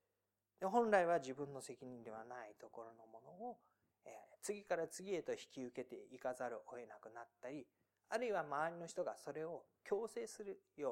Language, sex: Japanese, male